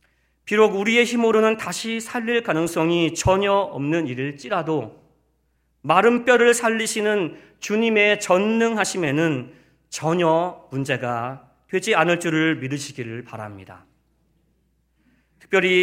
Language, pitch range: Korean, 120-185 Hz